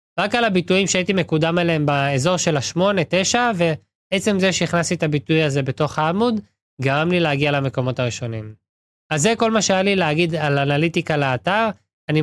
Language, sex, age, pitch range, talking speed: Hebrew, male, 20-39, 145-185 Hz, 160 wpm